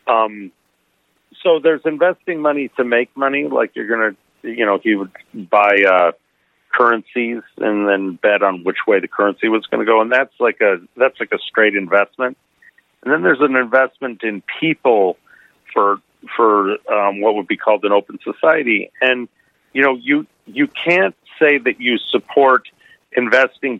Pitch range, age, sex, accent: 105-135 Hz, 50-69, male, American